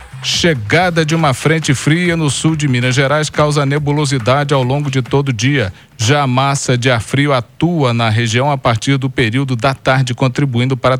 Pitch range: 125-155 Hz